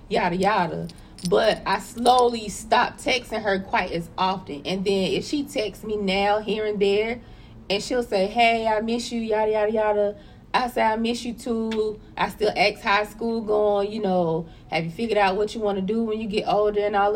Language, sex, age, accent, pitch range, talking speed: English, female, 20-39, American, 185-215 Hz, 210 wpm